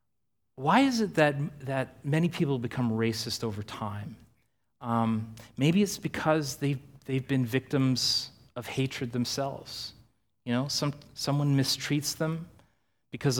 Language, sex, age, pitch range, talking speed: English, male, 30-49, 115-140 Hz, 130 wpm